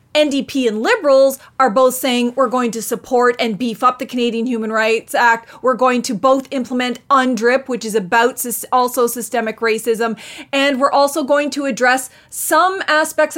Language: English